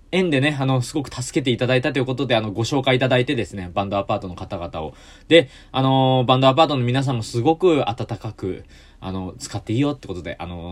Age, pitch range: 20-39, 105-145 Hz